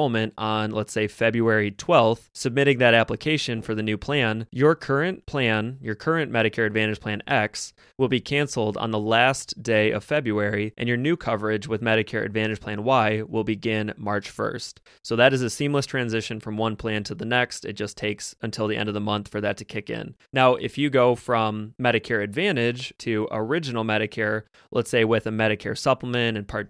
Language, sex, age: English, male, 20-39